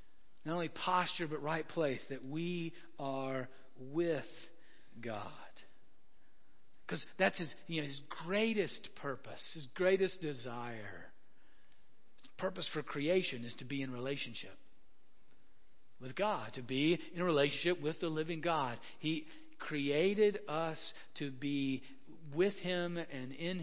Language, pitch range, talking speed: English, 145-185 Hz, 120 wpm